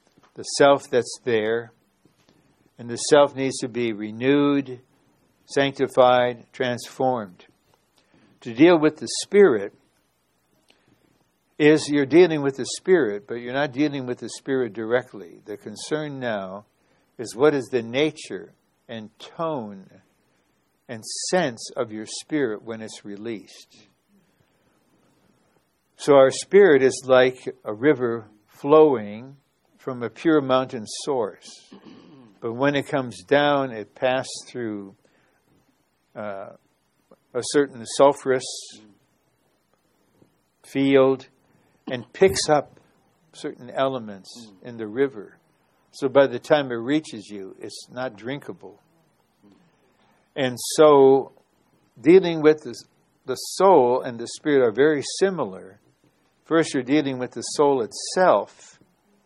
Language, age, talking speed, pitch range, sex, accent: English, 60-79, 115 wpm, 115-145 Hz, male, American